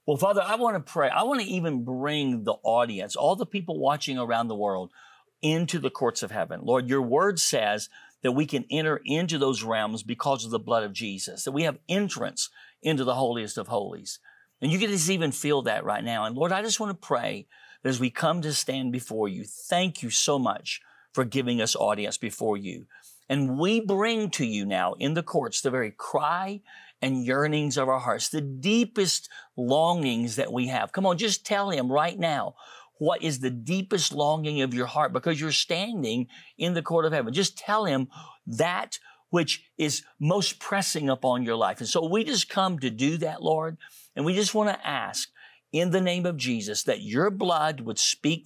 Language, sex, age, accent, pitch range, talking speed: English, male, 50-69, American, 130-180 Hz, 205 wpm